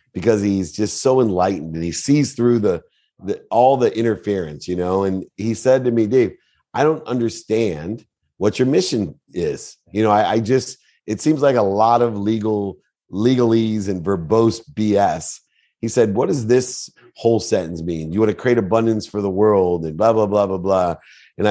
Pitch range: 95-115 Hz